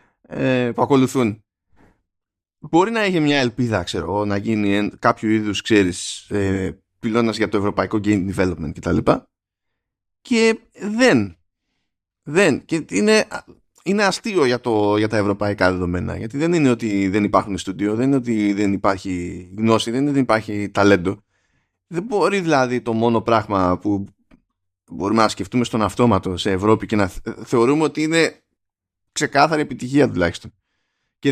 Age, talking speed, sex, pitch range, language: 20-39, 145 wpm, male, 95-135 Hz, Greek